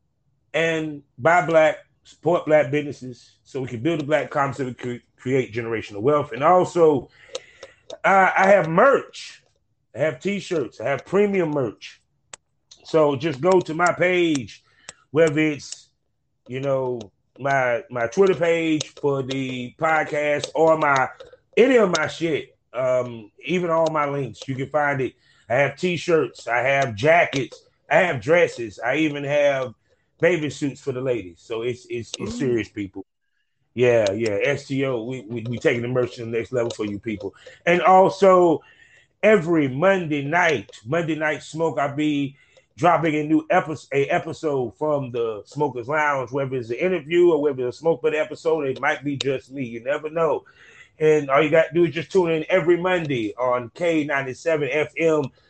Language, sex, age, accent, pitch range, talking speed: English, male, 30-49, American, 130-170 Hz, 165 wpm